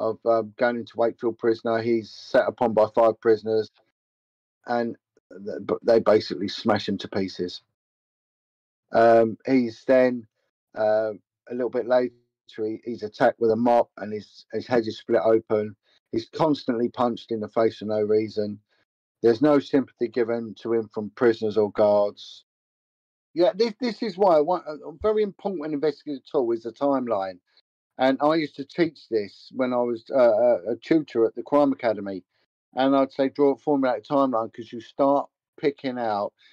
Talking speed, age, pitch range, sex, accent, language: 170 wpm, 50-69, 110-145 Hz, male, British, English